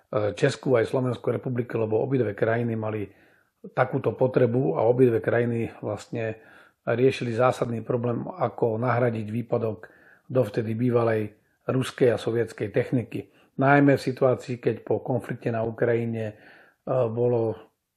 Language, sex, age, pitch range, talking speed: Slovak, male, 40-59, 115-135 Hz, 115 wpm